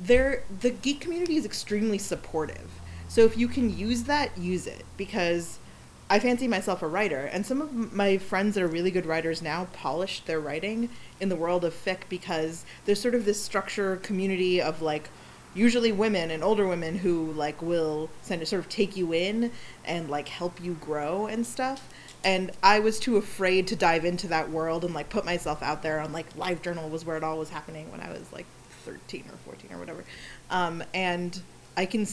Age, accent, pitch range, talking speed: 30-49, American, 155-205 Hz, 205 wpm